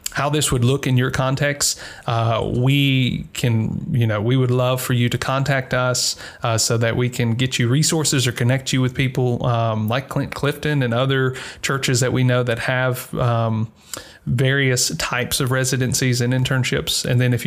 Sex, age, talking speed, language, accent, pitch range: male, 30-49, 190 wpm, English, American, 120-135 Hz